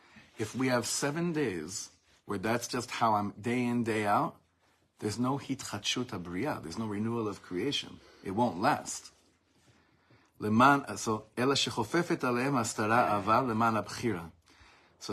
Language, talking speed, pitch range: English, 105 wpm, 100-130 Hz